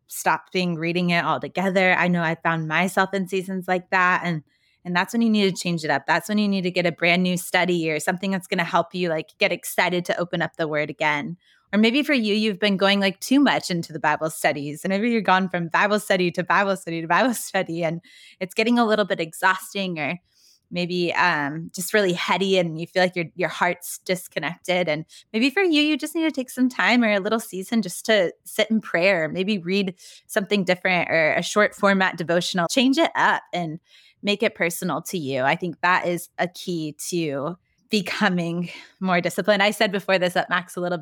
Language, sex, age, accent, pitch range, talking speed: English, female, 20-39, American, 170-205 Hz, 230 wpm